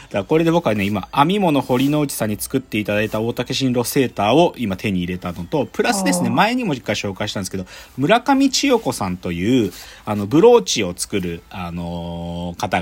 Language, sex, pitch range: Japanese, male, 90-150 Hz